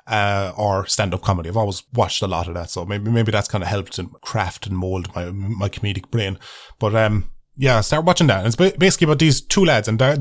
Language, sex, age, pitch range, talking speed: English, male, 20-39, 95-135 Hz, 240 wpm